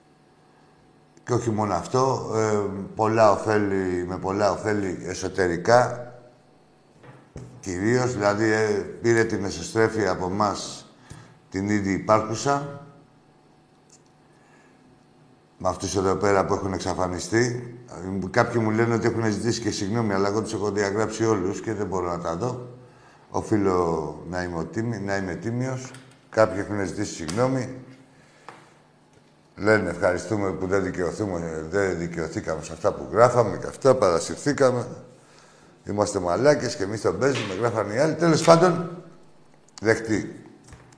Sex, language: male, Greek